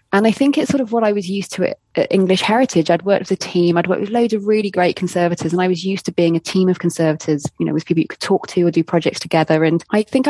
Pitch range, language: 160-185 Hz, English